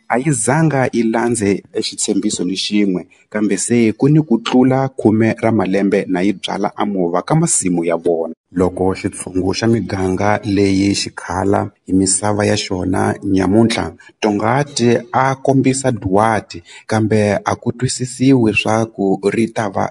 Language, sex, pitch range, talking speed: Portuguese, male, 95-125 Hz, 100 wpm